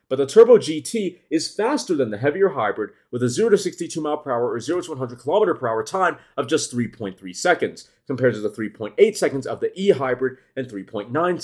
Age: 30-49